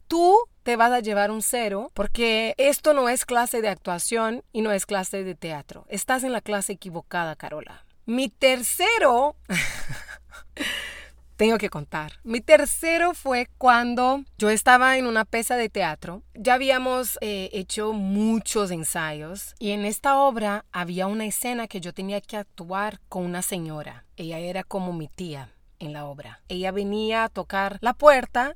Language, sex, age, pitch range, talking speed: Spanish, female, 30-49, 195-255 Hz, 160 wpm